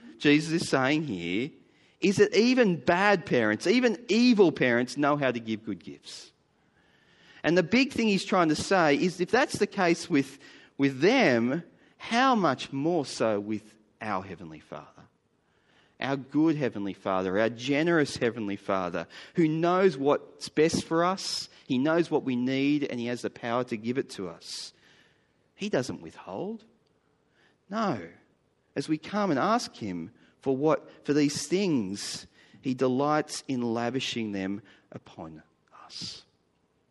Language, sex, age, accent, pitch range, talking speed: English, male, 30-49, Australian, 100-160 Hz, 150 wpm